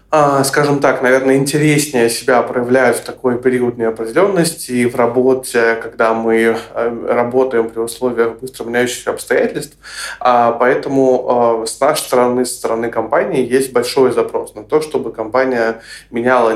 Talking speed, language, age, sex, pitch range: 130 wpm, Russian, 20-39, male, 115-130 Hz